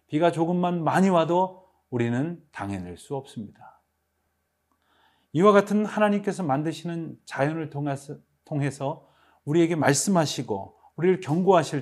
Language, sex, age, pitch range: Korean, male, 40-59, 115-175 Hz